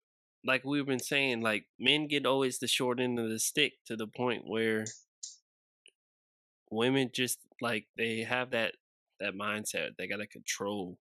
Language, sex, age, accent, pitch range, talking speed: English, male, 20-39, American, 105-130 Hz, 165 wpm